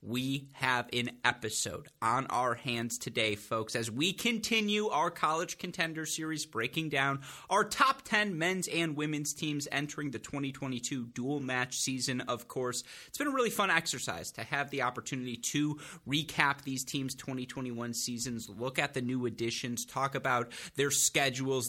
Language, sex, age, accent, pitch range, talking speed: English, male, 30-49, American, 120-150 Hz, 160 wpm